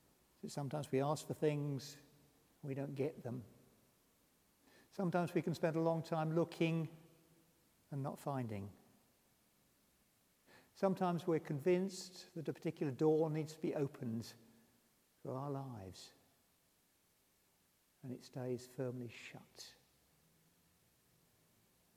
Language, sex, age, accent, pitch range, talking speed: English, male, 60-79, British, 115-150 Hz, 110 wpm